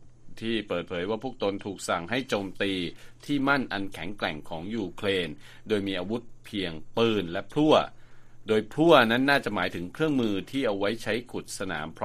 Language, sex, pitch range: Thai, male, 95-120 Hz